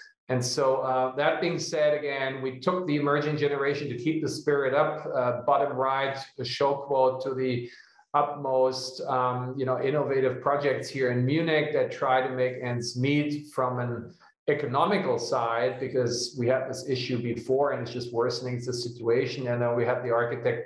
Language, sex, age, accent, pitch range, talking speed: English, male, 40-59, German, 120-145 Hz, 180 wpm